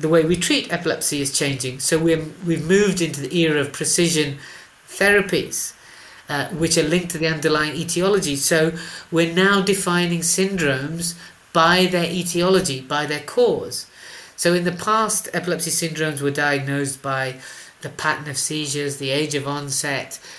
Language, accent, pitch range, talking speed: English, British, 145-175 Hz, 155 wpm